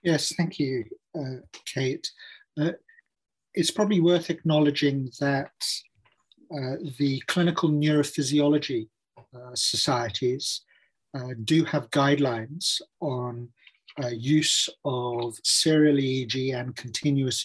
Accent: British